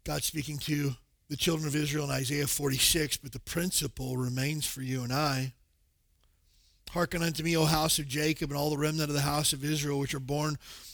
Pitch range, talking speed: 135-175 Hz, 205 wpm